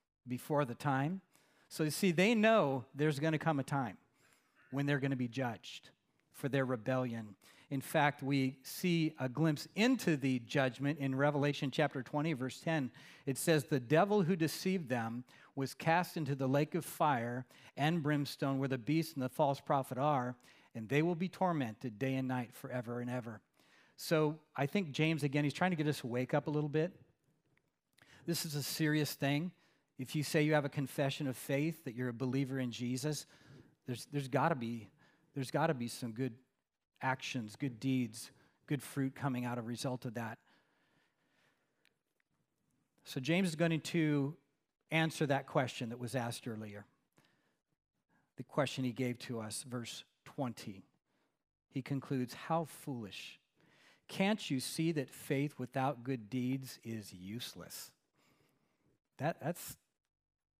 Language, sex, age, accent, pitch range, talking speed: English, male, 40-59, American, 125-155 Hz, 160 wpm